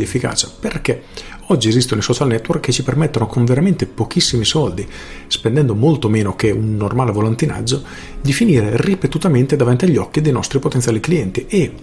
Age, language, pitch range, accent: 40-59, Italian, 115-145 Hz, native